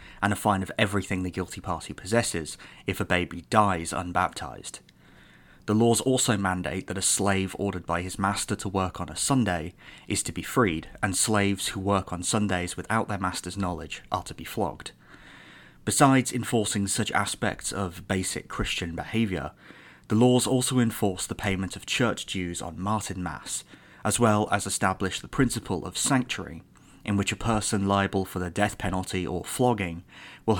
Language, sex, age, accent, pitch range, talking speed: English, male, 30-49, British, 90-110 Hz, 175 wpm